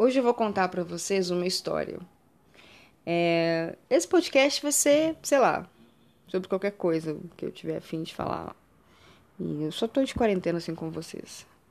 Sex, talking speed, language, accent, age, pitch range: female, 165 wpm, Portuguese, Brazilian, 20-39, 165-200 Hz